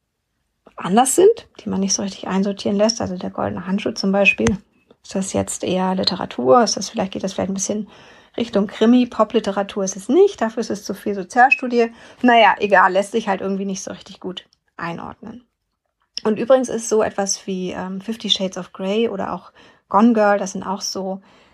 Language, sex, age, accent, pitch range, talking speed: German, female, 30-49, German, 190-220 Hz, 195 wpm